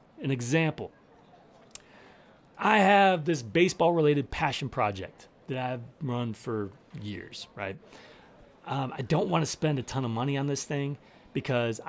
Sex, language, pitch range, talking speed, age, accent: male, English, 130-175 Hz, 140 wpm, 30-49, American